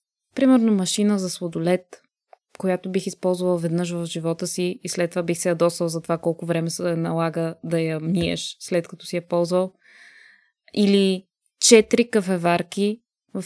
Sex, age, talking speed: female, 20-39, 160 wpm